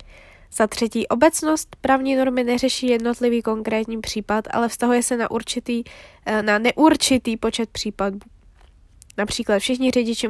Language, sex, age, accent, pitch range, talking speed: Czech, female, 10-29, native, 215-255 Hz, 120 wpm